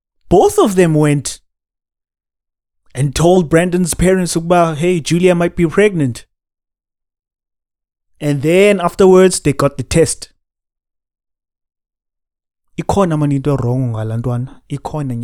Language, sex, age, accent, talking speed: English, male, 20-39, South African, 85 wpm